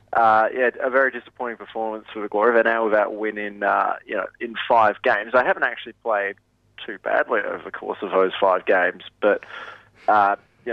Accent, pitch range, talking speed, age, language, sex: Australian, 110-125 Hz, 205 wpm, 20-39, English, male